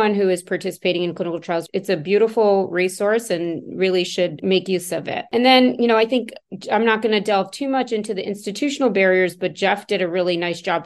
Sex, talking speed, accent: female, 225 wpm, American